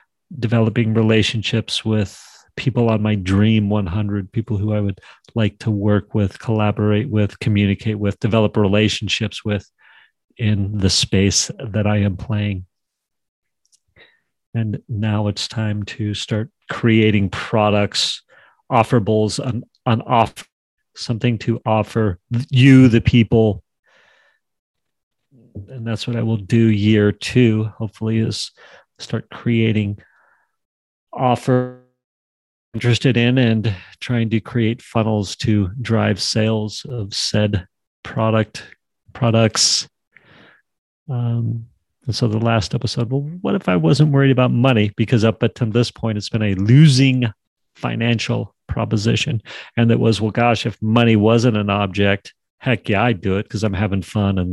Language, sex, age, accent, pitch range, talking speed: English, male, 40-59, American, 100-115 Hz, 130 wpm